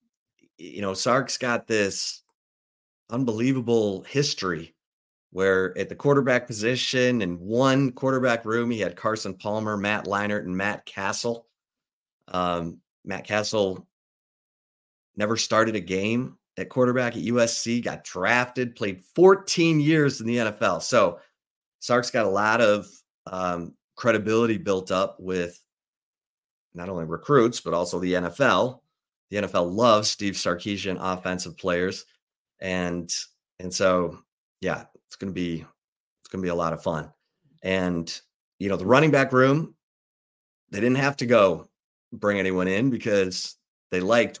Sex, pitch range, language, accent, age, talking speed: male, 90-115 Hz, English, American, 30-49, 140 wpm